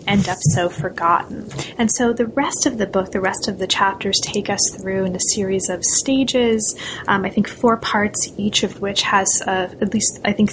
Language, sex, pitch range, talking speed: English, female, 195-240 Hz, 215 wpm